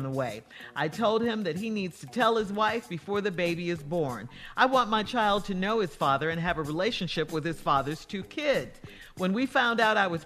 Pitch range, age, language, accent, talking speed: 170-245 Hz, 50-69, English, American, 235 wpm